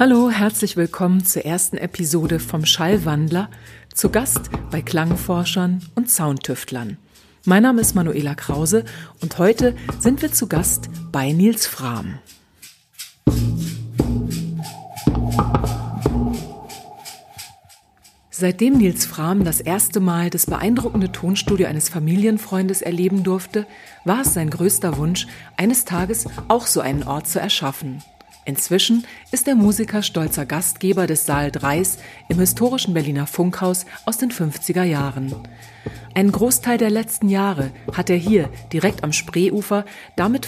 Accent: German